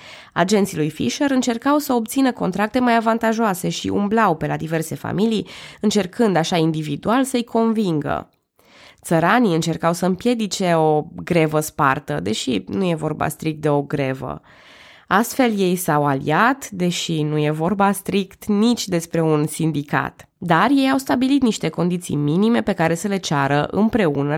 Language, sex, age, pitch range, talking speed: Romanian, female, 20-39, 155-210 Hz, 150 wpm